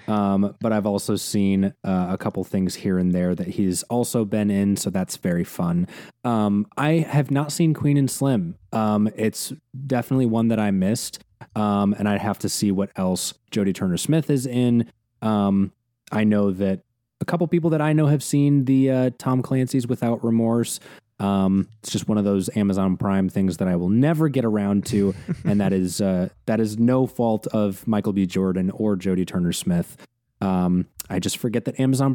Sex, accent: male, American